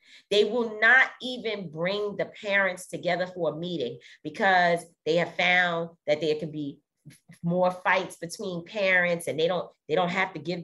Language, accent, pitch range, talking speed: English, American, 155-200 Hz, 175 wpm